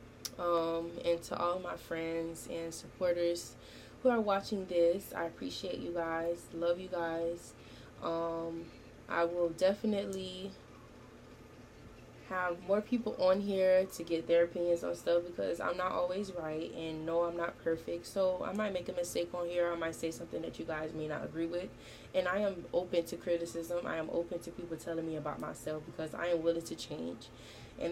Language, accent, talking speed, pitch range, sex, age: English, American, 185 wpm, 165-190 Hz, female, 20-39